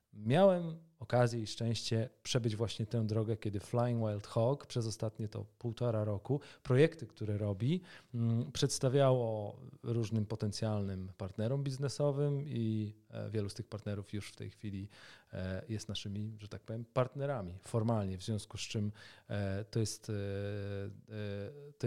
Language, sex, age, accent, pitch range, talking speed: Polish, male, 40-59, native, 105-125 Hz, 130 wpm